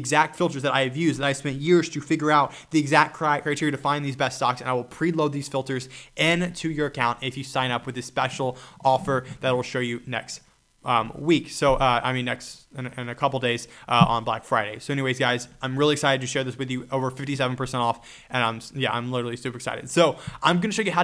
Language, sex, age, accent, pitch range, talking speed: English, male, 20-39, American, 130-160 Hz, 255 wpm